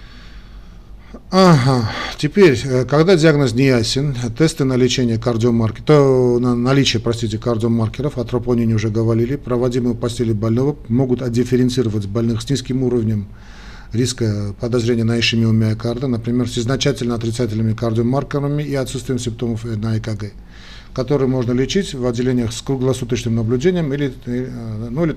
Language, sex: Russian, male